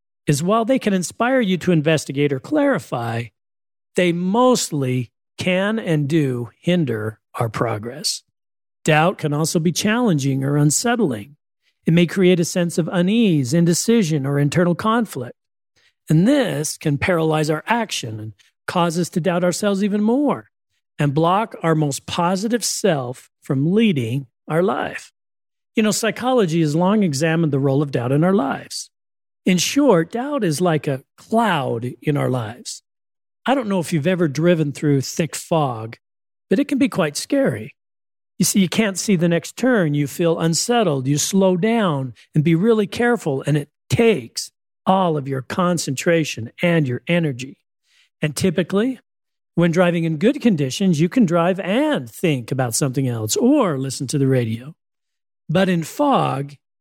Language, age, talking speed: English, 40-59, 160 wpm